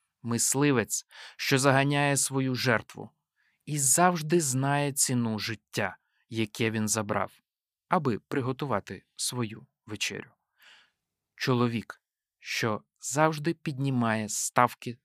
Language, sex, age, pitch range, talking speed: Ukrainian, male, 20-39, 110-150 Hz, 90 wpm